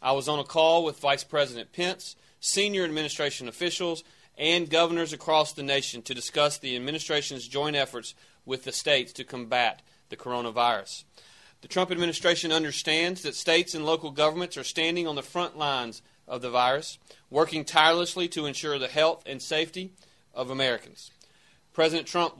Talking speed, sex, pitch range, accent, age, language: 160 wpm, male, 135-165 Hz, American, 30-49, English